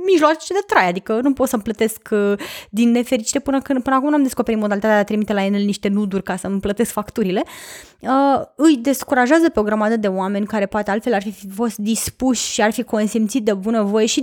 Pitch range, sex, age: 210-250 Hz, female, 20-39